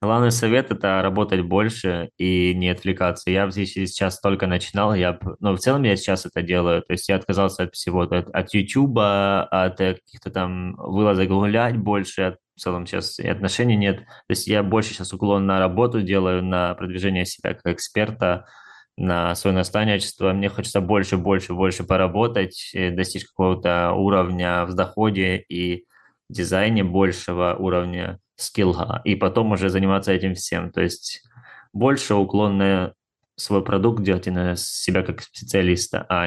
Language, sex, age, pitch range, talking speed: Russian, male, 20-39, 90-100 Hz, 160 wpm